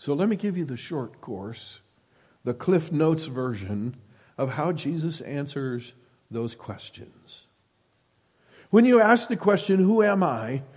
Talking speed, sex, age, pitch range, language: 145 wpm, male, 60-79, 115-160 Hz, English